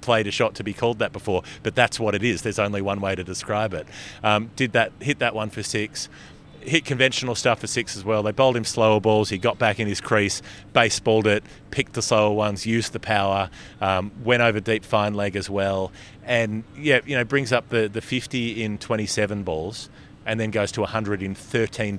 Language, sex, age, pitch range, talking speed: English, male, 30-49, 95-115 Hz, 225 wpm